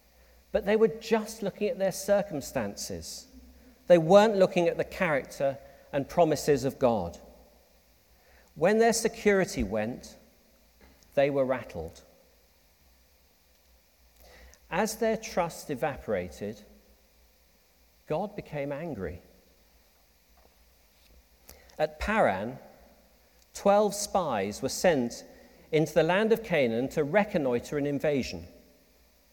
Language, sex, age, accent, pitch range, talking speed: English, male, 40-59, British, 125-205 Hz, 95 wpm